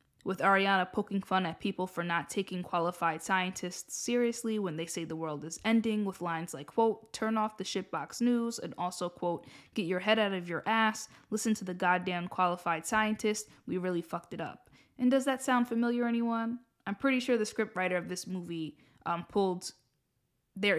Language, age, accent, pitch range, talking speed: English, 20-39, American, 175-225 Hz, 195 wpm